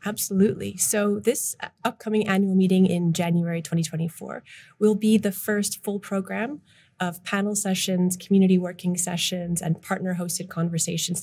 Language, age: English, 30-49